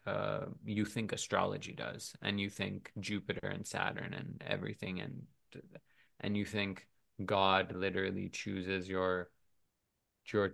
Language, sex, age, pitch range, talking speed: English, male, 20-39, 95-105 Hz, 125 wpm